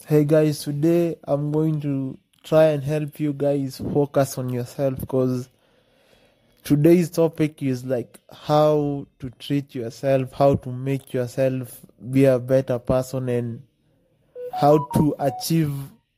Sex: male